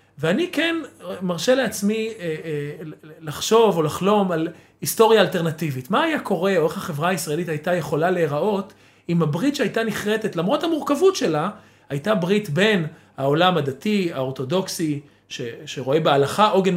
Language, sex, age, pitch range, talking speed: Hebrew, male, 40-59, 145-195 Hz, 130 wpm